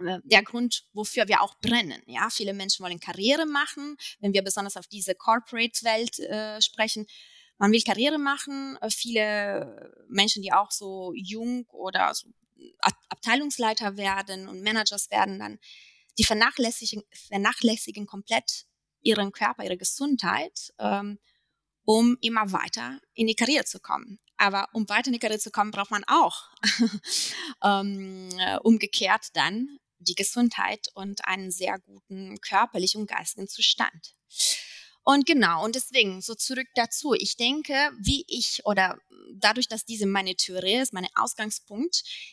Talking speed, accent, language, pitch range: 140 wpm, German, German, 200-245 Hz